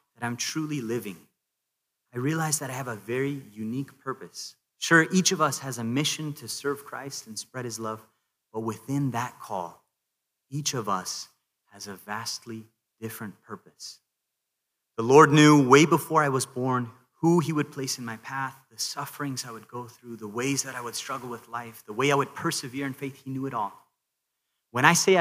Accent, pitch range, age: American, 115-140 Hz, 30-49